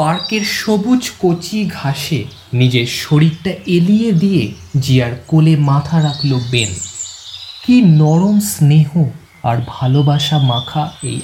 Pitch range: 120-175 Hz